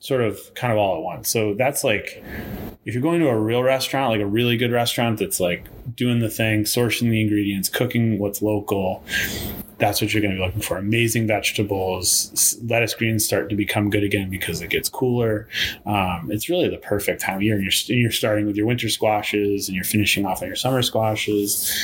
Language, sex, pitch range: English, male, 100-115 Hz